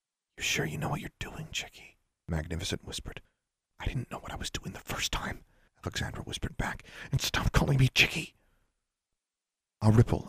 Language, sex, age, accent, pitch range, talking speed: English, male, 40-59, American, 85-100 Hz, 175 wpm